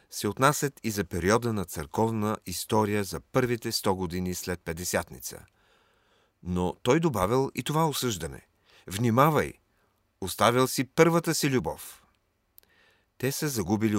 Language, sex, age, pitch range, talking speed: Bulgarian, male, 40-59, 100-135 Hz, 125 wpm